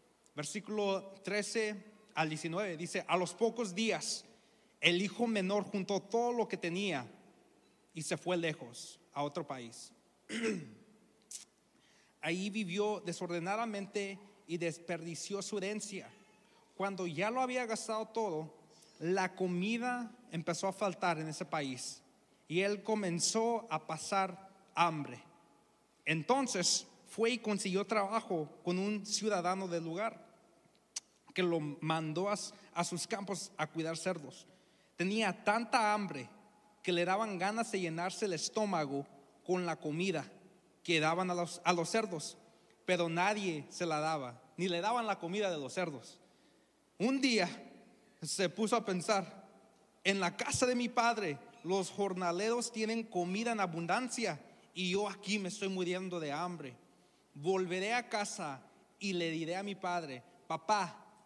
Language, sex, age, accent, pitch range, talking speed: Spanish, male, 40-59, Mexican, 170-215 Hz, 135 wpm